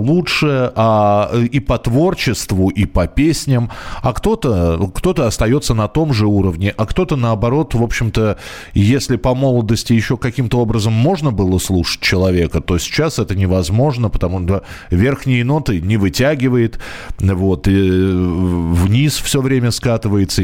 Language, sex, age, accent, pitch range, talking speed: Russian, male, 20-39, native, 100-145 Hz, 140 wpm